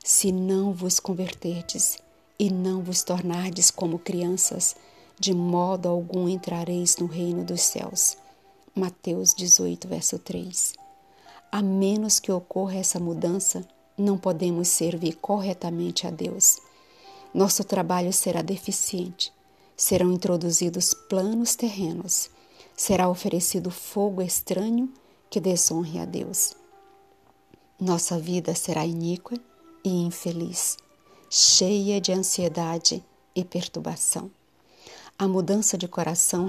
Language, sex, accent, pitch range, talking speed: Portuguese, female, Brazilian, 175-200 Hz, 105 wpm